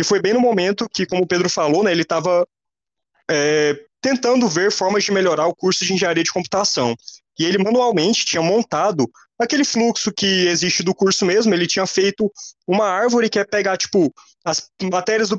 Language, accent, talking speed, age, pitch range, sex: Portuguese, Brazilian, 185 wpm, 20-39, 160-210 Hz, male